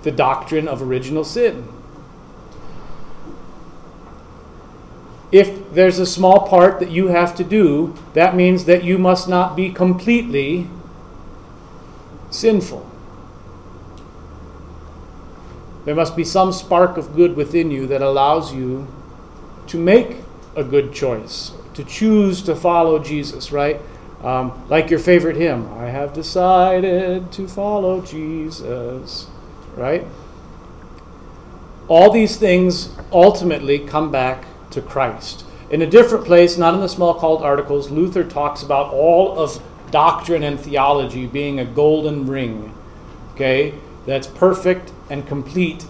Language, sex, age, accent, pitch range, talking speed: English, male, 40-59, American, 125-175 Hz, 125 wpm